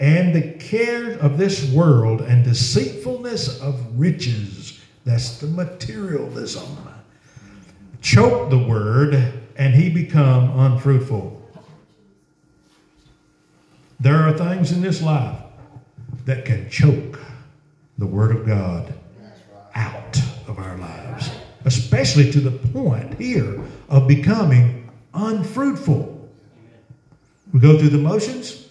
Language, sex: English, male